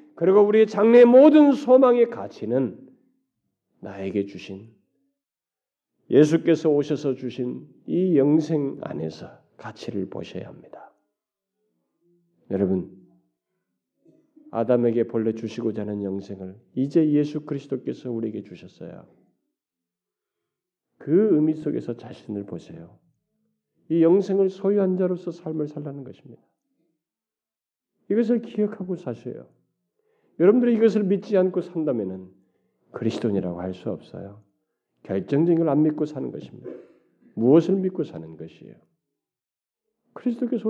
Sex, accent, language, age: male, native, Korean, 40-59